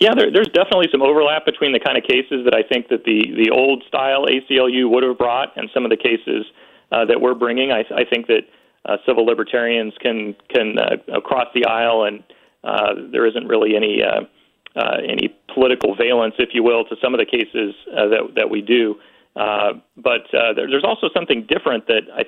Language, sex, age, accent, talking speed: English, male, 40-59, American, 210 wpm